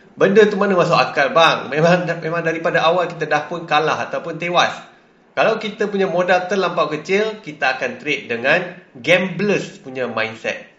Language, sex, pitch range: Malay, male, 150-195 Hz